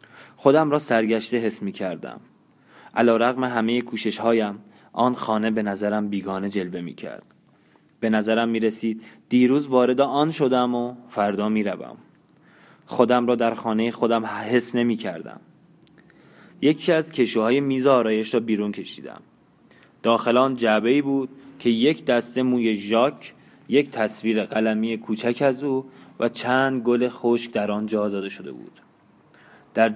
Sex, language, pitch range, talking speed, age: male, Persian, 105-120 Hz, 140 wpm, 20-39